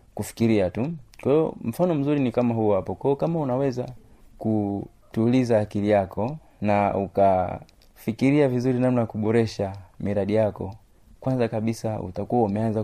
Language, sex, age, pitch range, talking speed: Swahili, male, 30-49, 105-125 Hz, 125 wpm